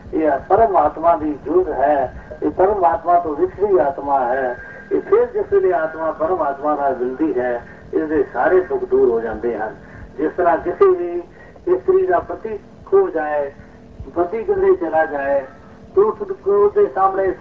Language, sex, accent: Hindi, male, native